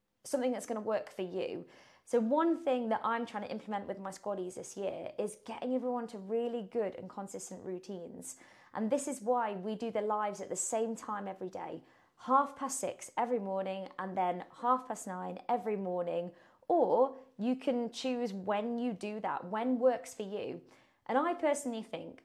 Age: 20-39